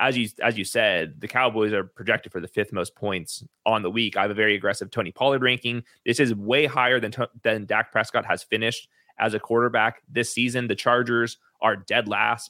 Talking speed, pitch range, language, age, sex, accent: 215 wpm, 110-130 Hz, English, 20-39, male, American